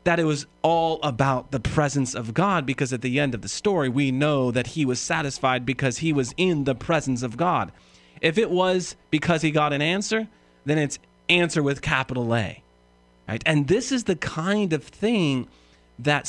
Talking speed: 195 wpm